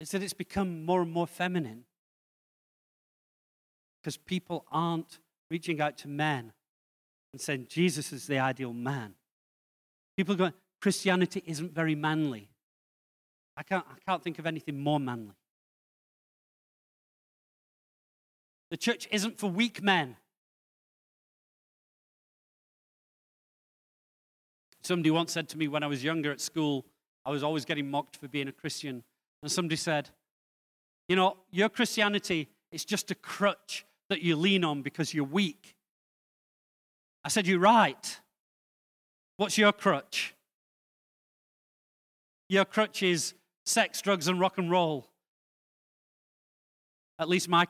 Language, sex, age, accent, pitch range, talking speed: English, male, 40-59, British, 145-185 Hz, 125 wpm